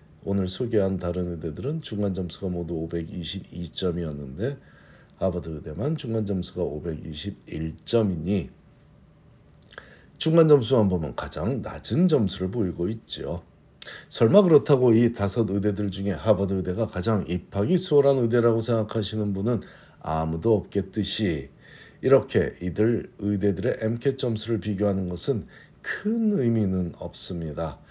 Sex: male